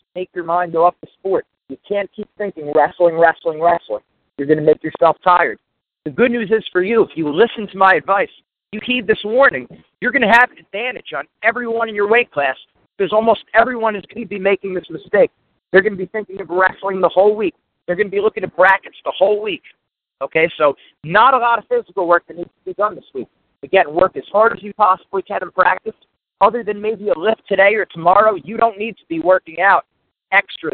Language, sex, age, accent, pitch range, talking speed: English, male, 50-69, American, 170-215 Hz, 230 wpm